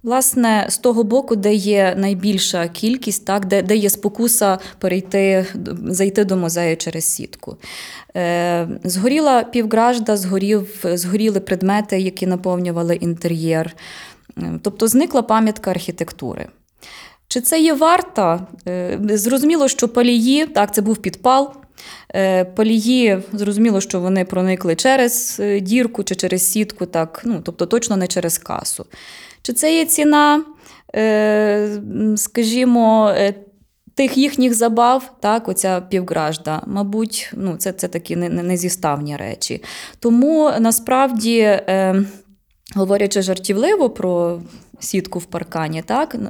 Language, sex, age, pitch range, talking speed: Ukrainian, female, 20-39, 185-240 Hz, 110 wpm